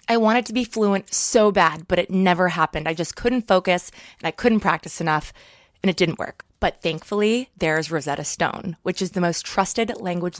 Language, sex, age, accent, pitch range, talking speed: English, female, 20-39, American, 170-220 Hz, 200 wpm